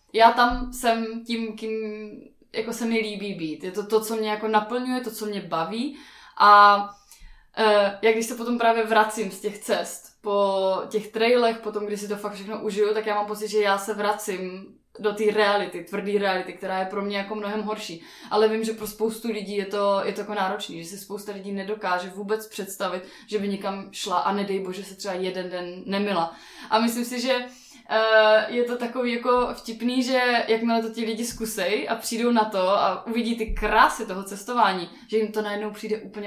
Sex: female